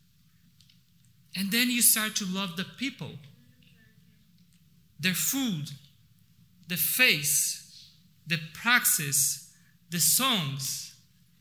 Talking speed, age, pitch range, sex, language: 85 wpm, 40-59, 150-200 Hz, male, English